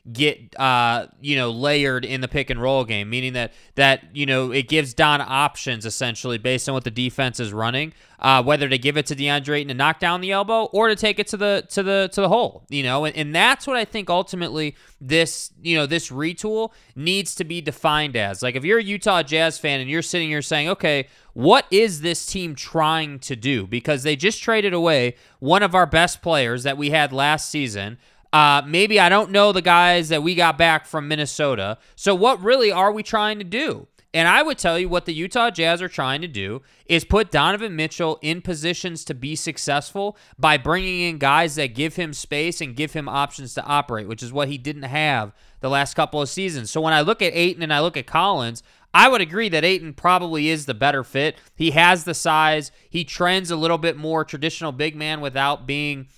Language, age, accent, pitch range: English, 20-39, American, 140-175 Hz